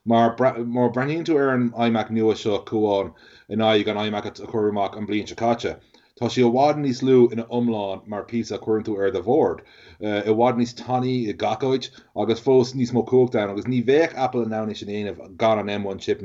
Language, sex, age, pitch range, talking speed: English, male, 30-49, 110-125 Hz, 170 wpm